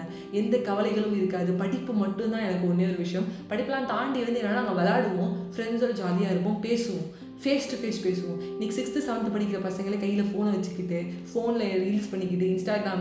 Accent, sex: native, female